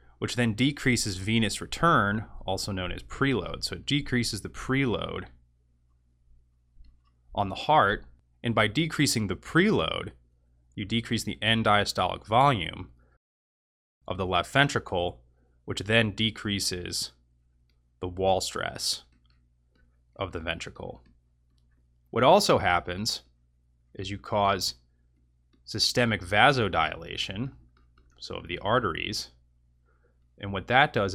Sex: male